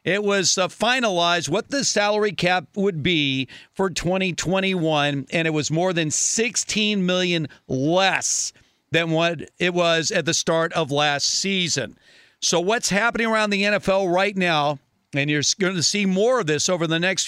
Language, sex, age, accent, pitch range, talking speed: English, male, 50-69, American, 160-205 Hz, 170 wpm